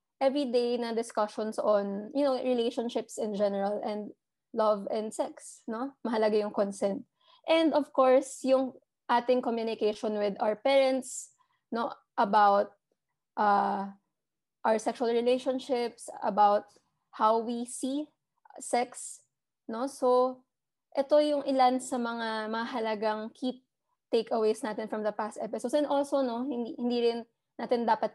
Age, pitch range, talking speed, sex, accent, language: 20-39, 215-255 Hz, 130 wpm, female, native, Filipino